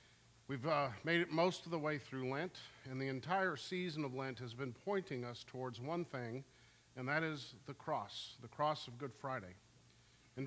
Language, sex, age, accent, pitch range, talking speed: English, male, 50-69, American, 120-160 Hz, 195 wpm